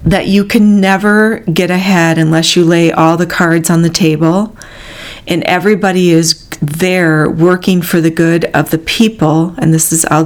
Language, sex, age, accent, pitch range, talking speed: English, female, 40-59, American, 160-185 Hz, 175 wpm